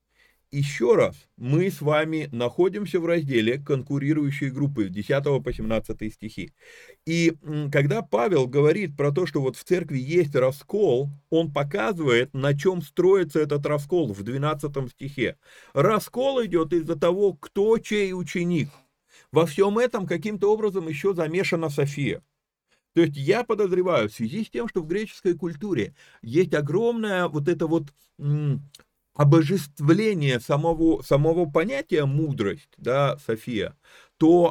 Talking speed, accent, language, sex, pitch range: 135 wpm, native, Russian, male, 140-180 Hz